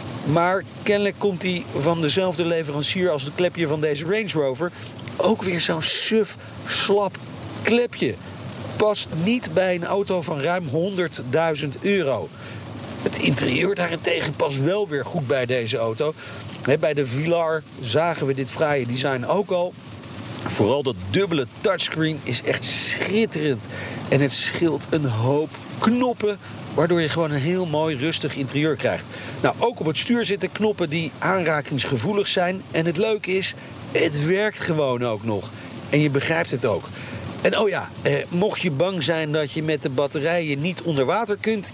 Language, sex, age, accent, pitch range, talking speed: Dutch, male, 50-69, Dutch, 135-185 Hz, 160 wpm